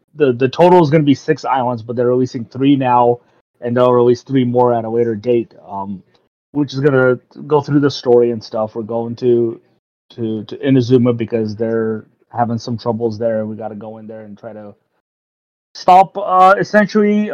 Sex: male